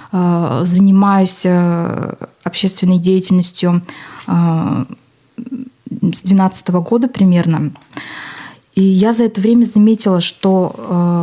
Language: Russian